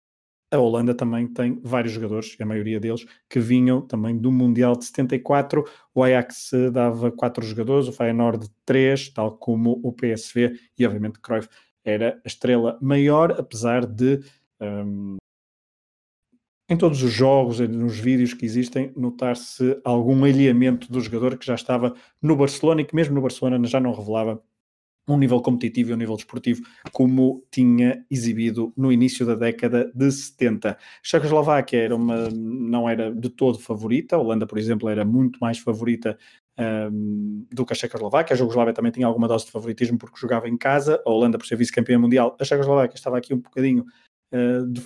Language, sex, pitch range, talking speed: Portuguese, male, 115-130 Hz, 170 wpm